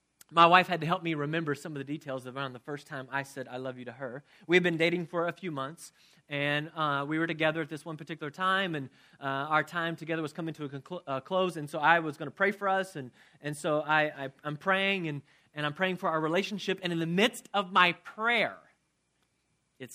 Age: 30-49